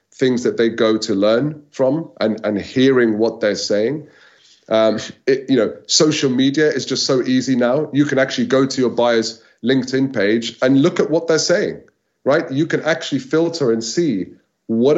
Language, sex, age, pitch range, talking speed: English, male, 30-49, 110-150 Hz, 190 wpm